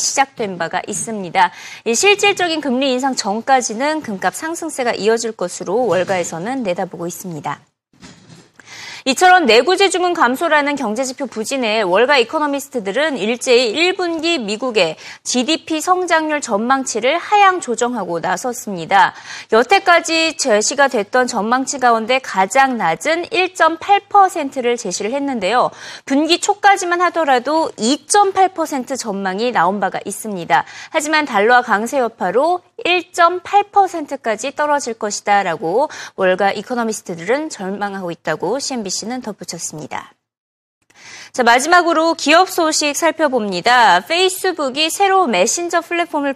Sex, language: female, Korean